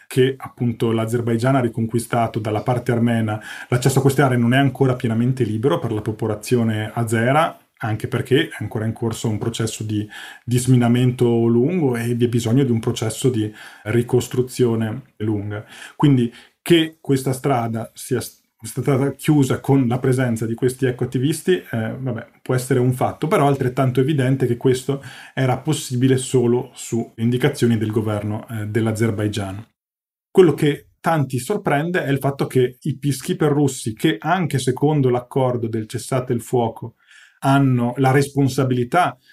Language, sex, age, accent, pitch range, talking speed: Italian, male, 30-49, native, 115-135 Hz, 145 wpm